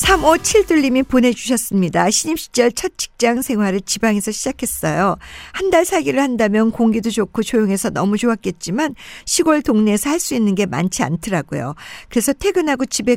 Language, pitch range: Korean, 185-265 Hz